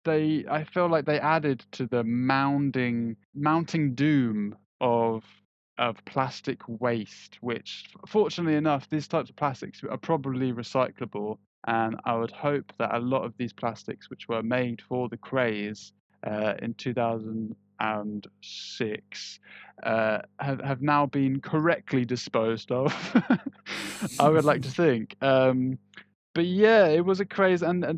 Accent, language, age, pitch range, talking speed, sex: British, English, 20-39, 115-150 Hz, 140 wpm, male